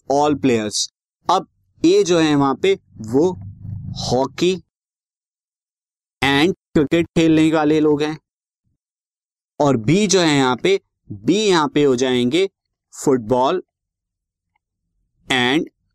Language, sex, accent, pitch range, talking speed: Hindi, male, native, 125-155 Hz, 110 wpm